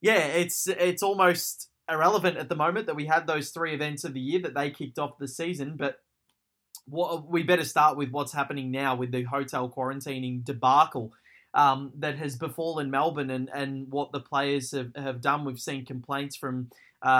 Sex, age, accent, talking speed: male, 20-39, Australian, 190 wpm